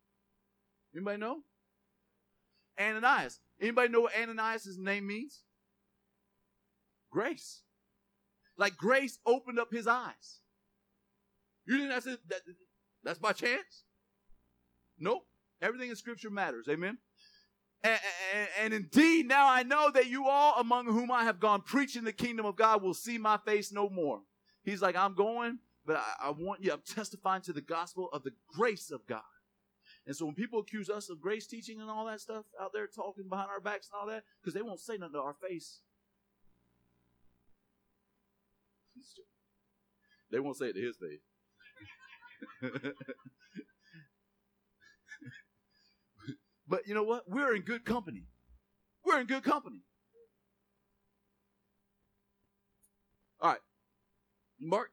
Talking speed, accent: 135 wpm, American